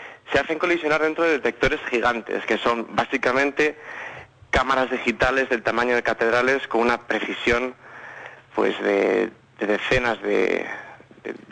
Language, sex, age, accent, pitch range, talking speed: Spanish, male, 30-49, Spanish, 115-150 Hz, 130 wpm